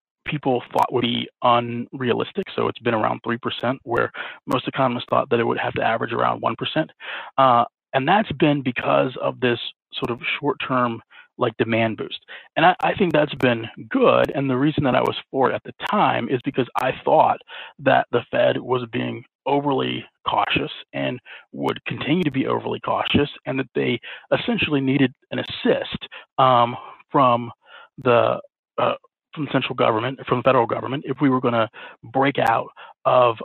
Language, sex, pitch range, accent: English, male, 120-135 Hz, American